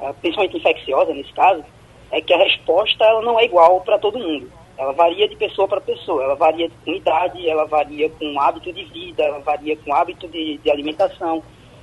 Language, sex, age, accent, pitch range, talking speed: Portuguese, female, 20-39, Brazilian, 155-195 Hz, 195 wpm